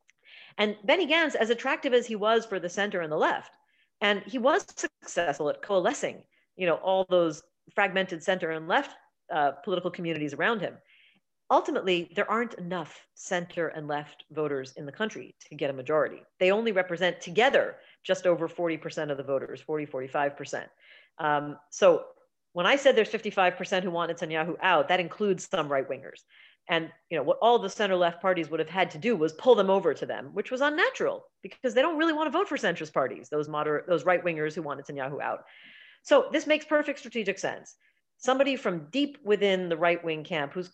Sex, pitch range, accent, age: female, 165-240 Hz, American, 40-59